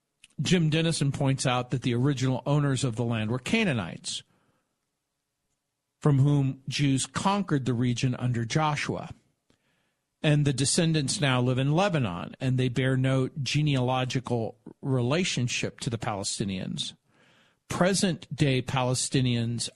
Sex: male